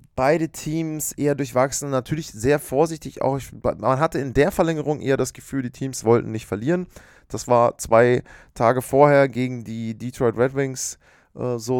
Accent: German